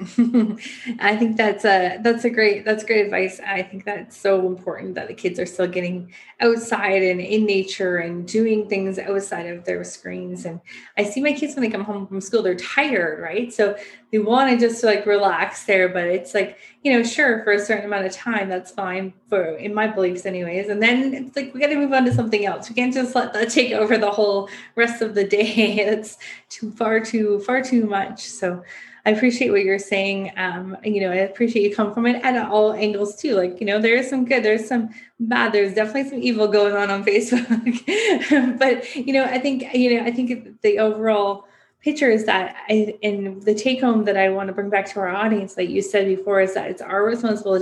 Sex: female